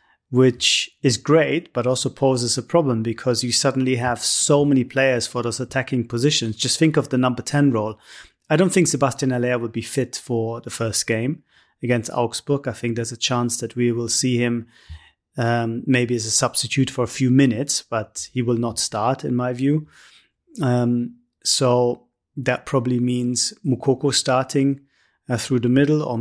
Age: 30-49